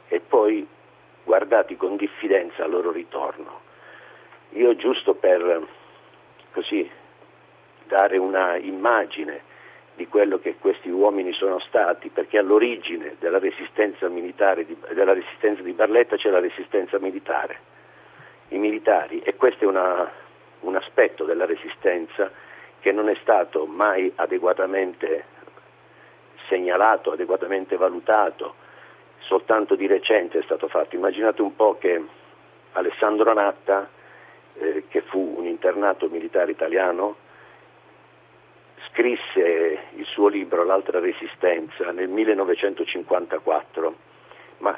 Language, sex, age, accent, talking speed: Italian, male, 50-69, native, 110 wpm